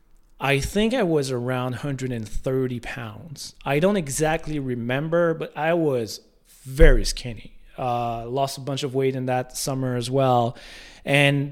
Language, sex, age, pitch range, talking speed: English, male, 30-49, 130-170 Hz, 145 wpm